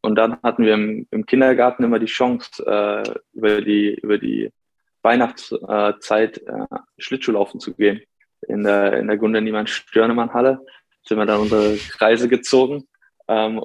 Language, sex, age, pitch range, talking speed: German, male, 20-39, 105-115 Hz, 155 wpm